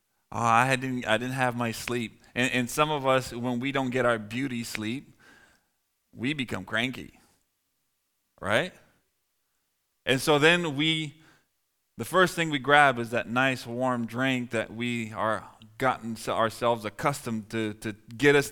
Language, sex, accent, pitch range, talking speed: English, male, American, 120-145 Hz, 155 wpm